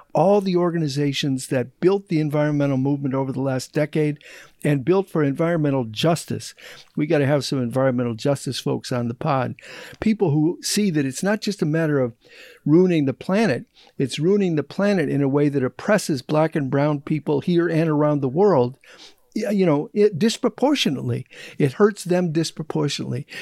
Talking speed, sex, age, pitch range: 170 wpm, male, 60-79, 135-170 Hz